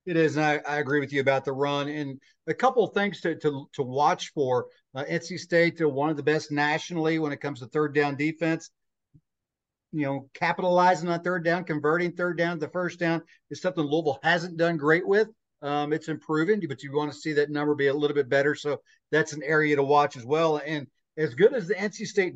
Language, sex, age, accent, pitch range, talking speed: English, male, 50-69, American, 140-165 Hz, 235 wpm